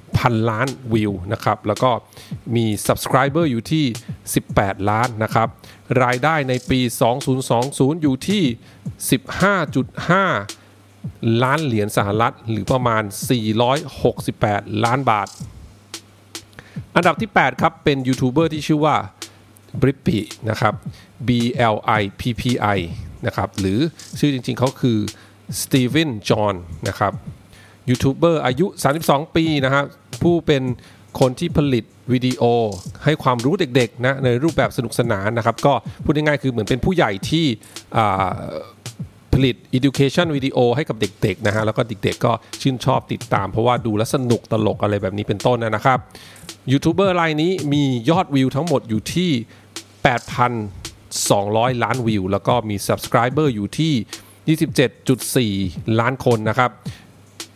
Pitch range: 110-140 Hz